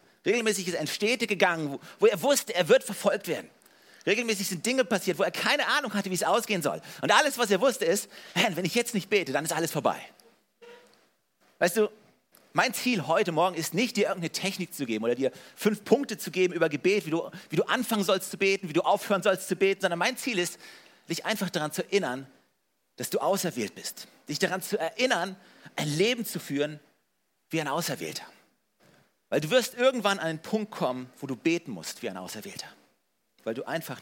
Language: German